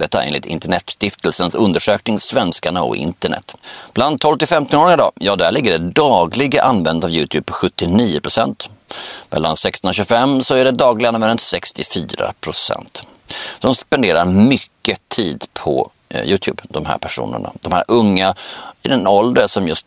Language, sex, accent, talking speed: Swedish, male, native, 140 wpm